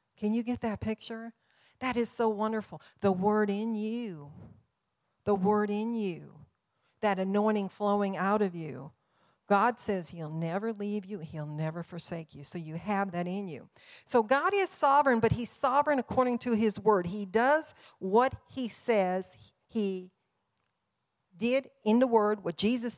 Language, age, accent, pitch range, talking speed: English, 50-69, American, 185-245 Hz, 160 wpm